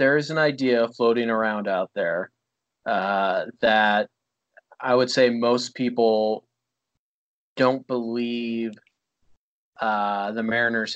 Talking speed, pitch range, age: 110 wpm, 110-125 Hz, 20-39